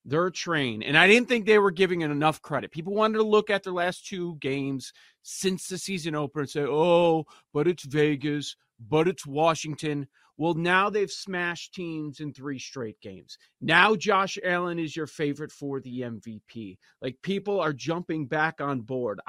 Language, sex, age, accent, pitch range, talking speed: English, male, 30-49, American, 135-185 Hz, 185 wpm